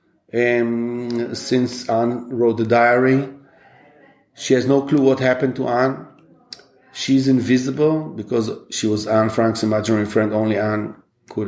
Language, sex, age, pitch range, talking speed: German, male, 40-59, 110-130 Hz, 135 wpm